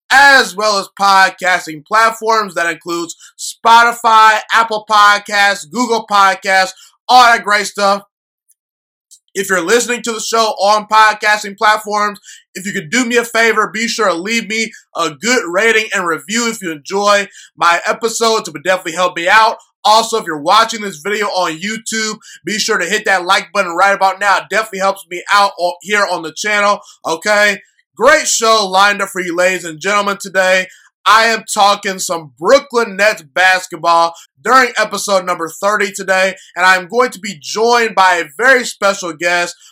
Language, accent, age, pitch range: English, American, 20-39, 180-220 Hz